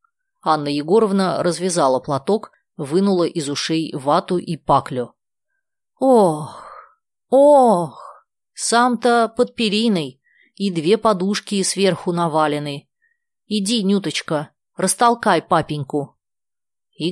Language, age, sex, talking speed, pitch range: Russian, 30-49, female, 90 wpm, 160-240 Hz